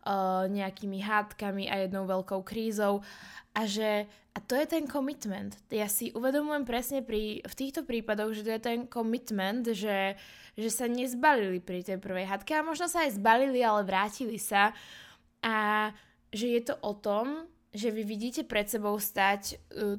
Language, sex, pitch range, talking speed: Slovak, female, 205-245 Hz, 165 wpm